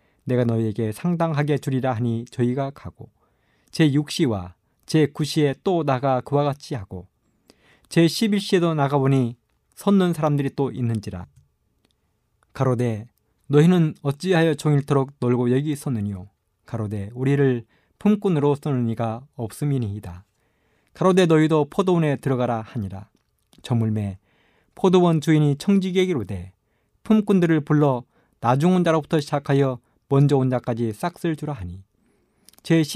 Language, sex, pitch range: Korean, male, 115-160 Hz